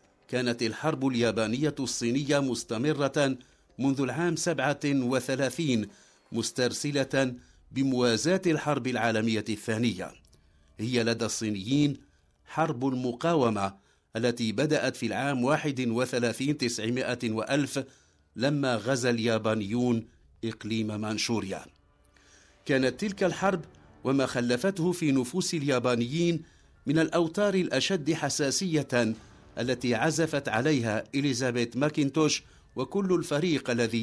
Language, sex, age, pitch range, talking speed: English, male, 50-69, 115-155 Hz, 90 wpm